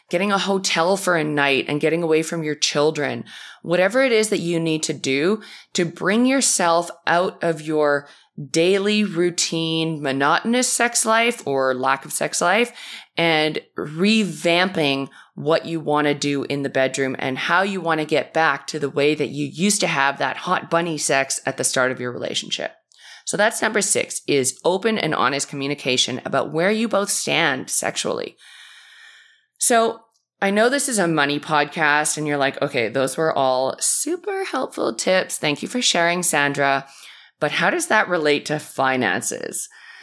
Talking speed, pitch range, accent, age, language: 175 wpm, 145-195 Hz, American, 20-39, English